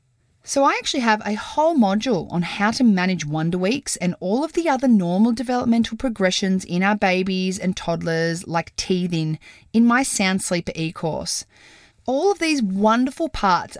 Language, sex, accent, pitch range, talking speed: English, female, Australian, 170-230 Hz, 165 wpm